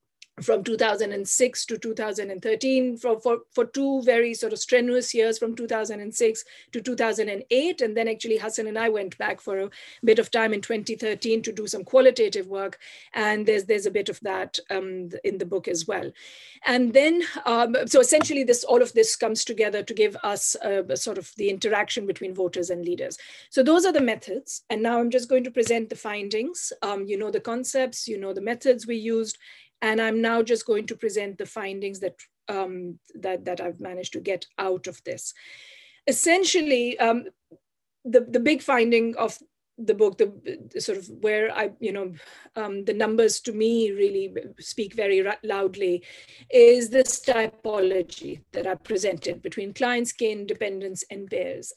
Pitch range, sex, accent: 210-265 Hz, female, Indian